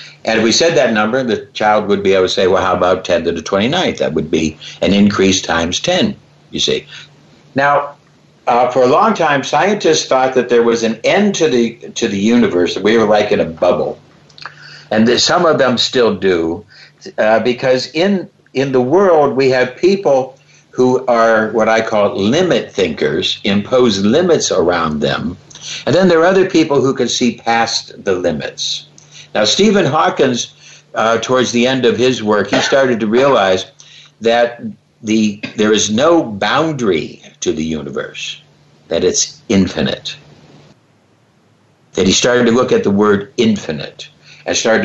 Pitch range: 105-135 Hz